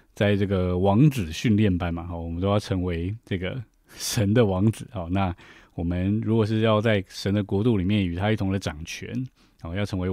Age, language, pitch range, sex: 20-39, Chinese, 95-115 Hz, male